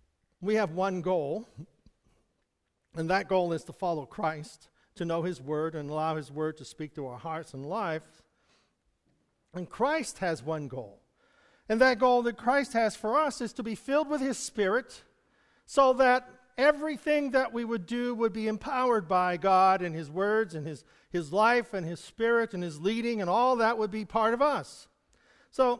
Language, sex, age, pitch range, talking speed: English, male, 50-69, 175-240 Hz, 185 wpm